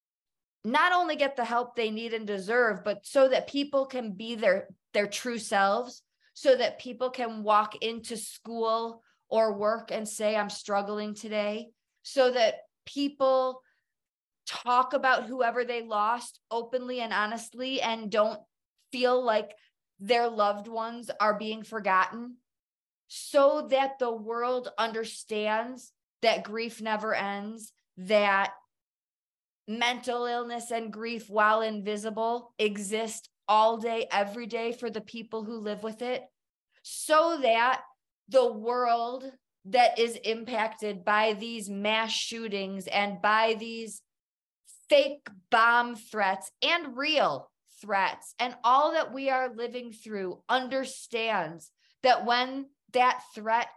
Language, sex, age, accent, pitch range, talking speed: English, female, 20-39, American, 215-250 Hz, 125 wpm